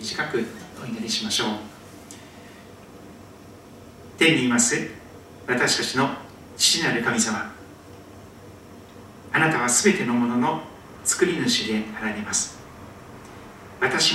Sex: male